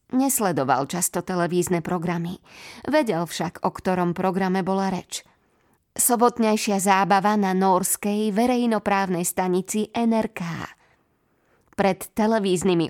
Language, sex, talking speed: Slovak, female, 95 wpm